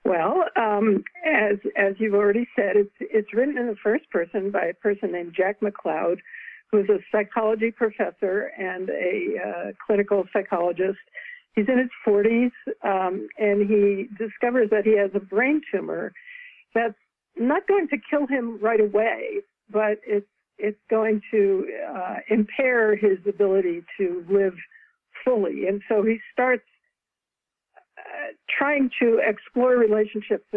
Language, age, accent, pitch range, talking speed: English, 60-79, American, 200-245 Hz, 140 wpm